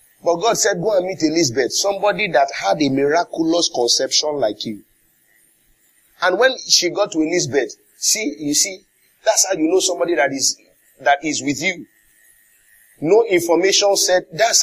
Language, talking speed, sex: English, 160 wpm, male